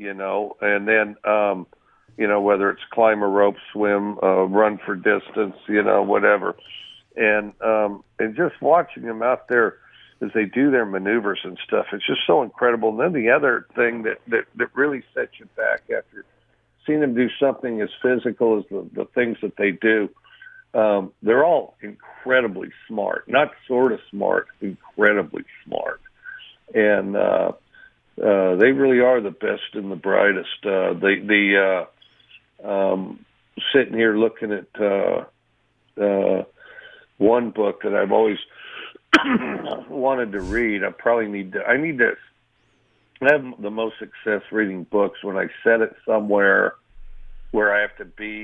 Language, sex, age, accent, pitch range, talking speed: English, male, 60-79, American, 100-120 Hz, 160 wpm